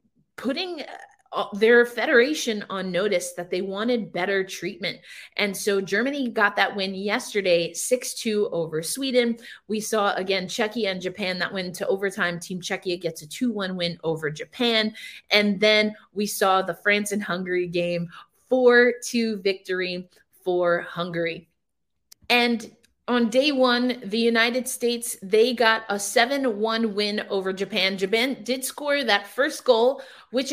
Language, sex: English, female